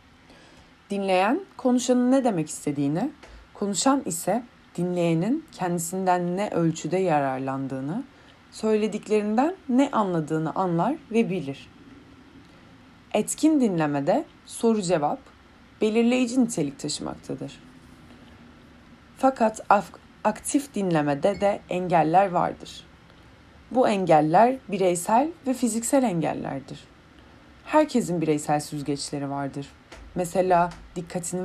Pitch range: 155-230 Hz